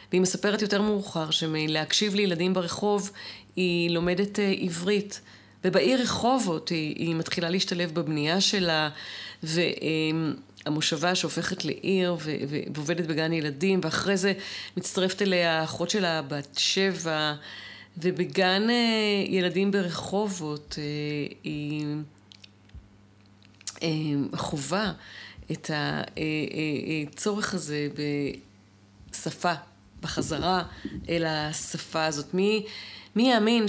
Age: 30-49